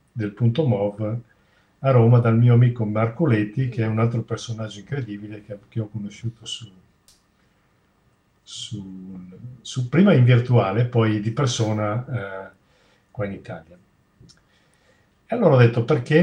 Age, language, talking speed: 50-69, Italian, 130 wpm